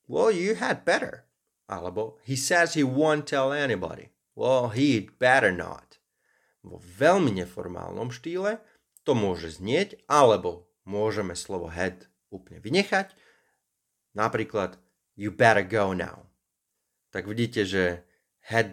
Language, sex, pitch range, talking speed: Slovak, male, 90-110 Hz, 110 wpm